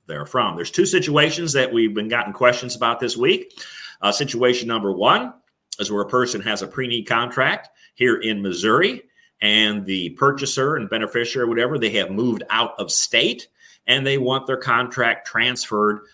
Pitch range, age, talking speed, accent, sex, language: 105-135 Hz, 50-69, 175 wpm, American, male, English